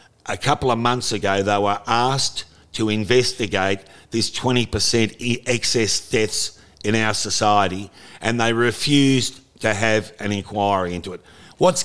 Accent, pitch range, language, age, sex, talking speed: Australian, 105-125 Hz, English, 50-69, male, 145 wpm